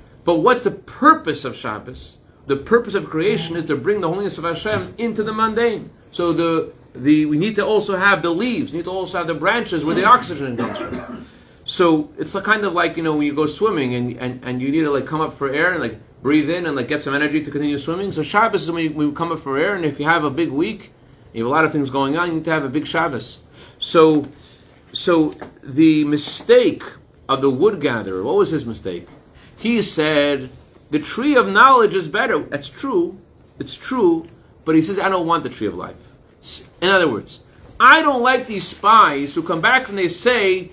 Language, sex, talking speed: English, male, 230 wpm